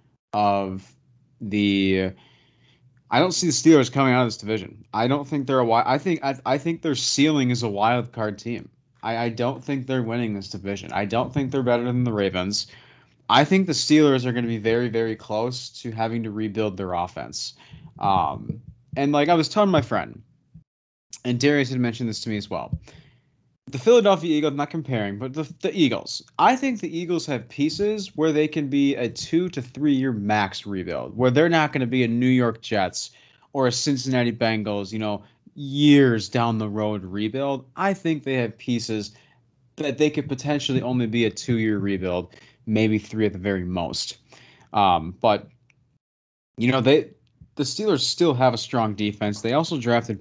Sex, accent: male, American